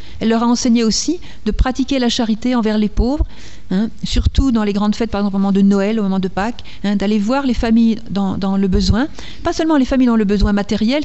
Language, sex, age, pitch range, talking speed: French, female, 50-69, 200-245 Hz, 245 wpm